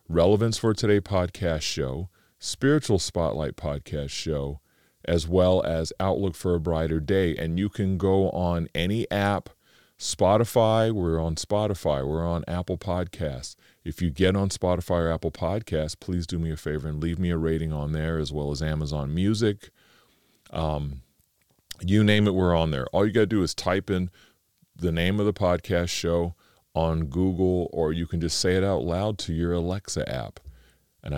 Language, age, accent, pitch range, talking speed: English, 40-59, American, 75-95 Hz, 180 wpm